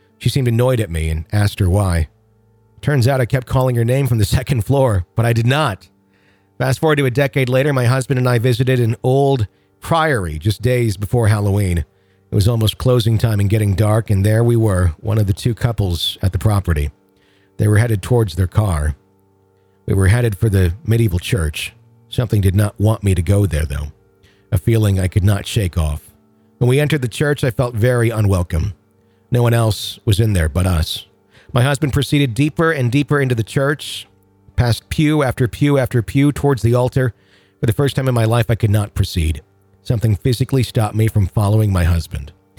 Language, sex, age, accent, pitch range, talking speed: English, male, 50-69, American, 95-125 Hz, 205 wpm